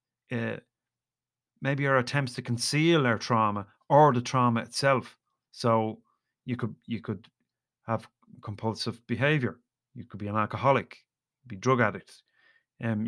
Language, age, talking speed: English, 30-49, 135 wpm